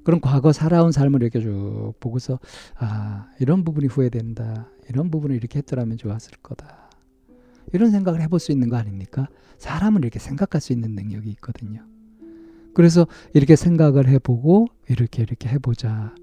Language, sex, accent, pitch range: Korean, male, native, 110-155 Hz